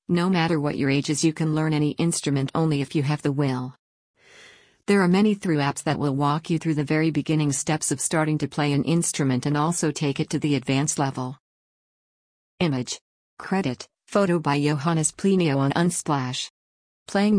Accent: American